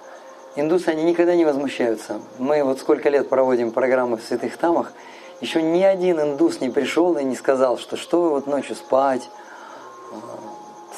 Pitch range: 130-160 Hz